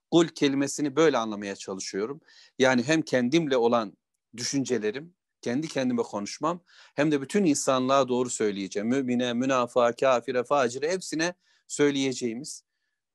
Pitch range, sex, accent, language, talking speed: 125-160 Hz, male, native, Turkish, 115 wpm